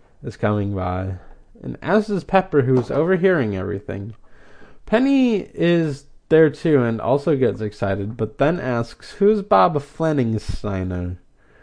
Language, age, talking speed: English, 20-39, 125 wpm